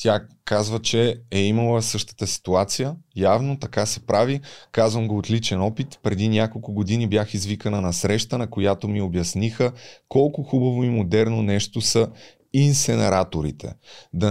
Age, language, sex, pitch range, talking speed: 30-49, Bulgarian, male, 95-120 Hz, 145 wpm